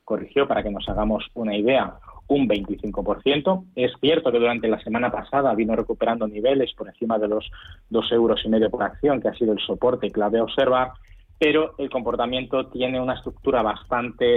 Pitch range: 105-130 Hz